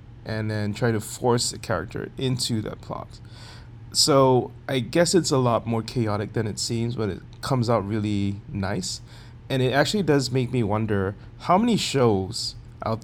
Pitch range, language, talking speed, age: 110-120 Hz, English, 175 wpm, 20-39